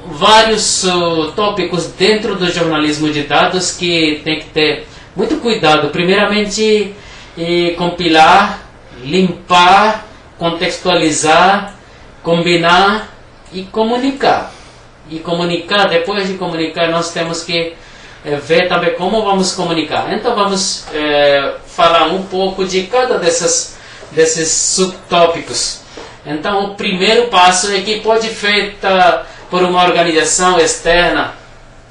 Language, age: Portuguese, 50-69